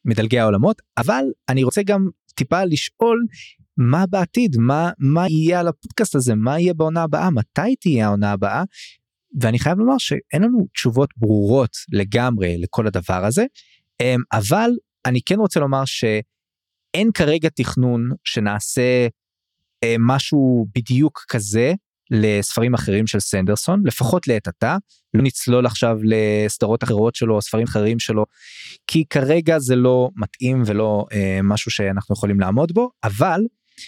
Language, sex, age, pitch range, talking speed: English, male, 20-39, 105-155 Hz, 135 wpm